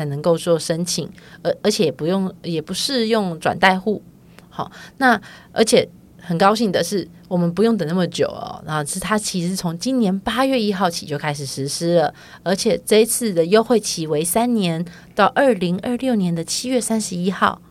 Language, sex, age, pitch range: Chinese, female, 30-49, 170-215 Hz